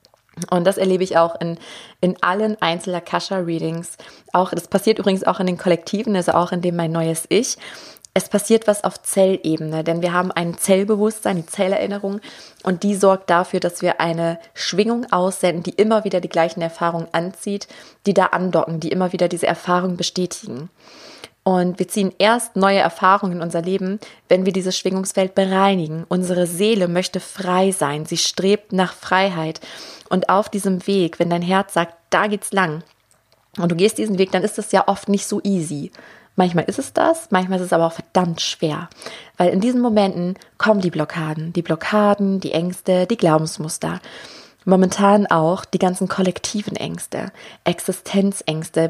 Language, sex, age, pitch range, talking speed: German, female, 20-39, 170-195 Hz, 170 wpm